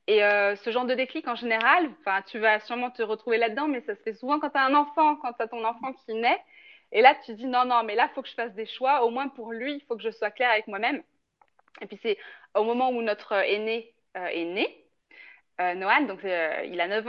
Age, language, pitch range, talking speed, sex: 20-39, French, 210-280 Hz, 265 wpm, female